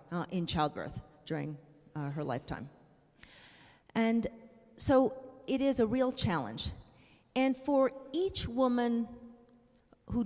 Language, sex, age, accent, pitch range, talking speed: English, female, 40-59, American, 160-225 Hz, 110 wpm